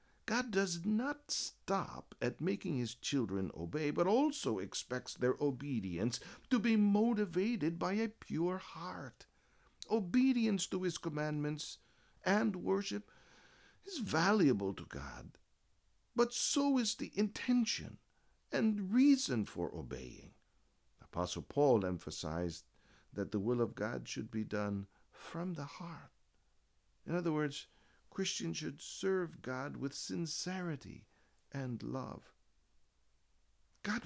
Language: English